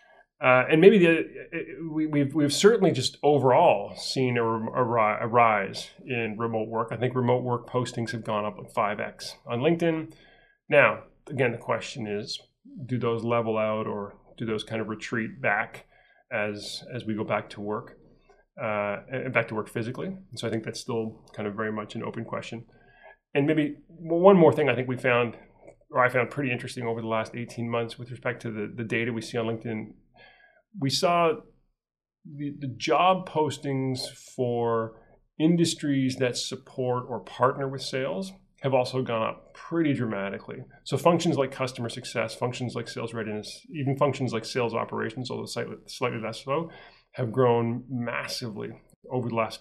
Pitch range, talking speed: 115-140 Hz, 175 wpm